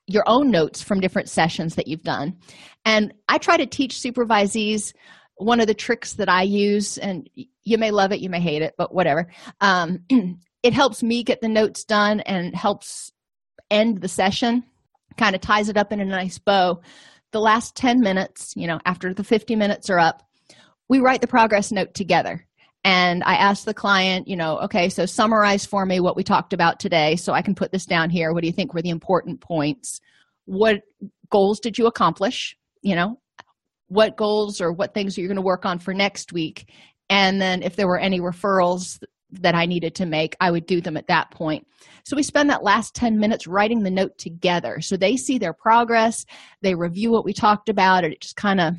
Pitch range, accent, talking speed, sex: 180-220 Hz, American, 210 wpm, female